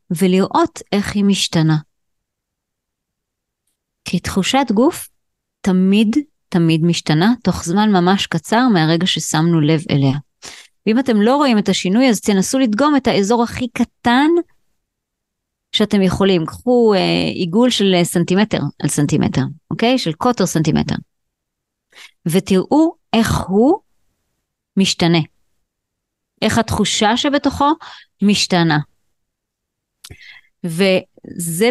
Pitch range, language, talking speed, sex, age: 170-240 Hz, Hebrew, 100 wpm, female, 30-49